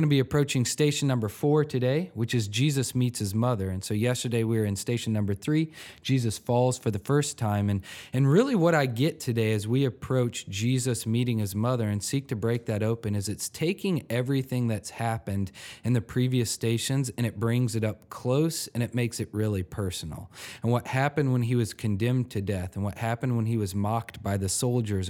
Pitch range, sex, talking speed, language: 105-125 Hz, male, 220 wpm, English